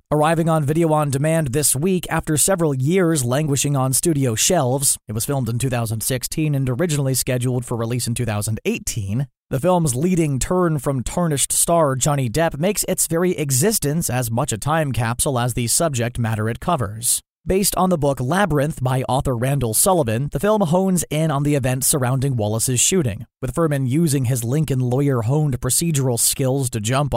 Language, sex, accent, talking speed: English, male, American, 175 wpm